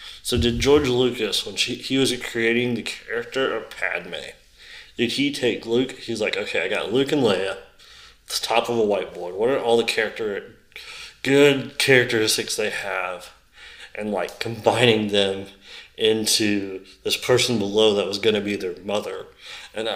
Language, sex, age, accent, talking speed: English, male, 20-39, American, 165 wpm